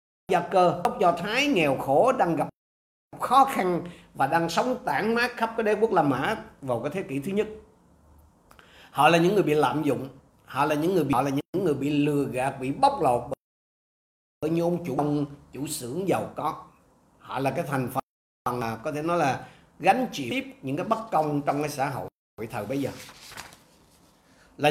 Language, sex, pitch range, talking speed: Vietnamese, male, 150-215 Hz, 205 wpm